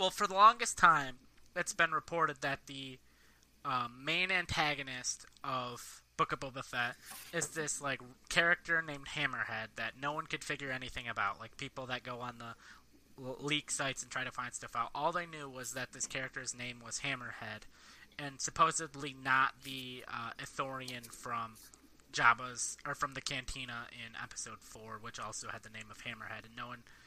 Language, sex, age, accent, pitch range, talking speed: English, male, 20-39, American, 125-150 Hz, 175 wpm